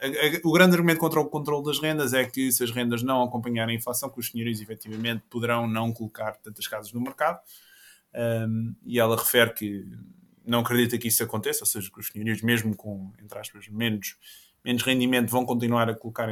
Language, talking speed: Portuguese, 195 wpm